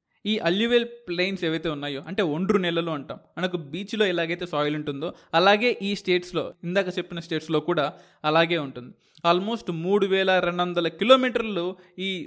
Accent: native